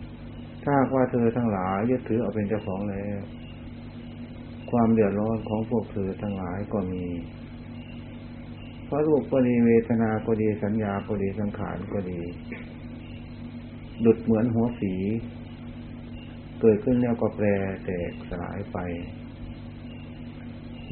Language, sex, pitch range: Thai, male, 100-120 Hz